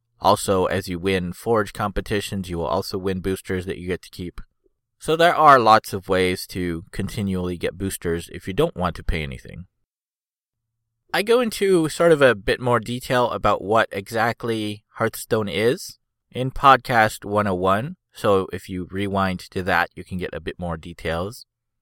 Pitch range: 95-130 Hz